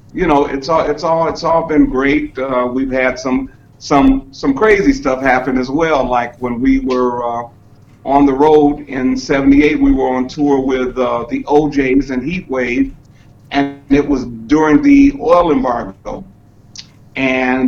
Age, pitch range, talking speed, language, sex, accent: 50-69, 125-145 Hz, 165 wpm, English, male, American